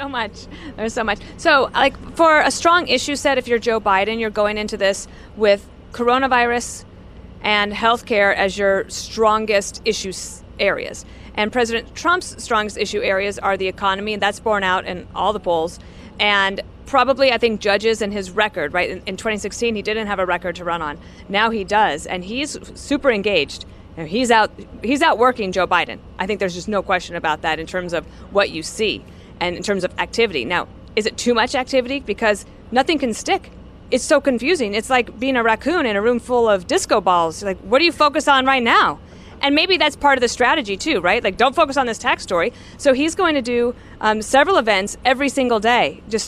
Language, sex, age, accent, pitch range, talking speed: English, female, 40-59, American, 195-255 Hz, 210 wpm